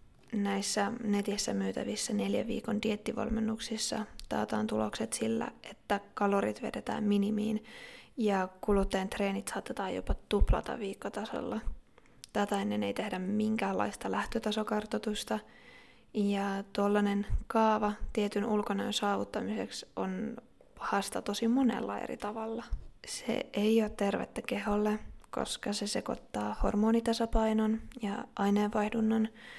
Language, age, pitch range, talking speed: Finnish, 20-39, 195-220 Hz, 100 wpm